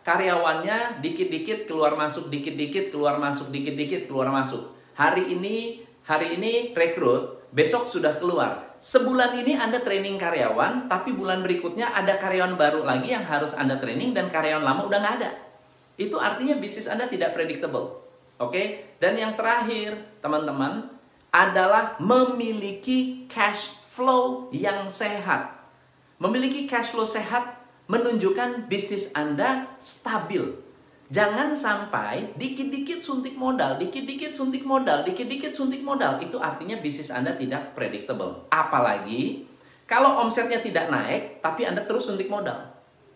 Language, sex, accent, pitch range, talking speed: Indonesian, male, native, 155-255 Hz, 130 wpm